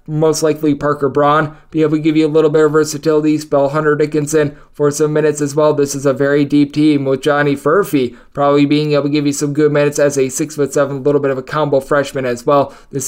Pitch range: 145-170 Hz